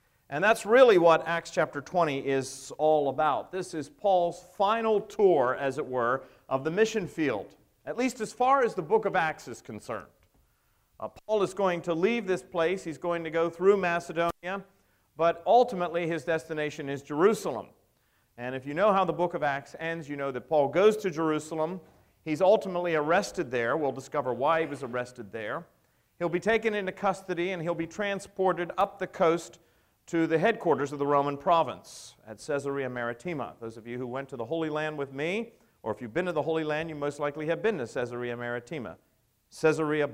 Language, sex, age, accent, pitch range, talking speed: English, male, 50-69, American, 135-185 Hz, 195 wpm